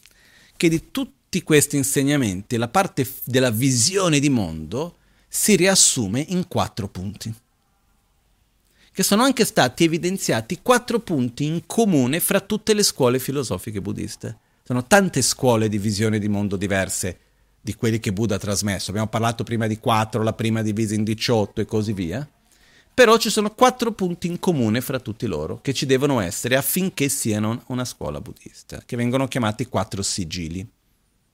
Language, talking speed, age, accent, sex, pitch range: Italian, 155 wpm, 40-59, native, male, 105-145 Hz